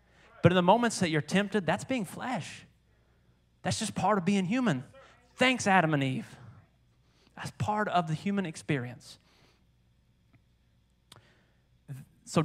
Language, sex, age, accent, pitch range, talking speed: English, male, 30-49, American, 125-165 Hz, 130 wpm